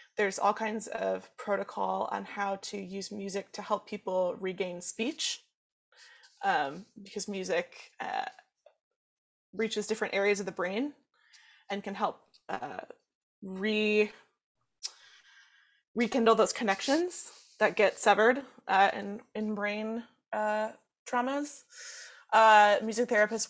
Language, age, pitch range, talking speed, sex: English, 20-39, 205-270 Hz, 115 wpm, female